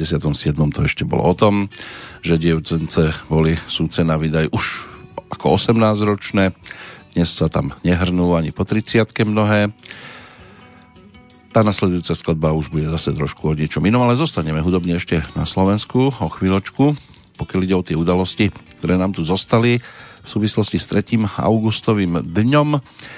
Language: Slovak